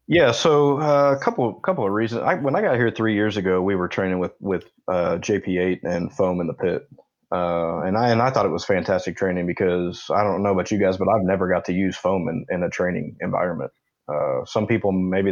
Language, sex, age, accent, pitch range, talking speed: English, male, 20-39, American, 90-110 Hz, 245 wpm